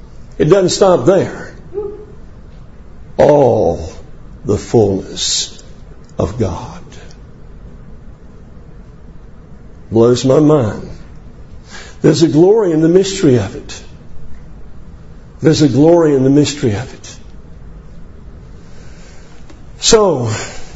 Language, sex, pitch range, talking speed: English, male, 170-215 Hz, 85 wpm